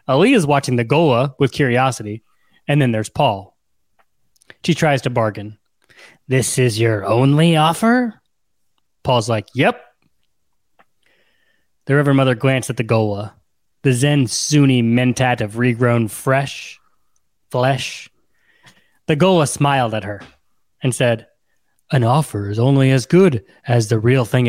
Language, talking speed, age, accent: English, 135 wpm, 20-39, American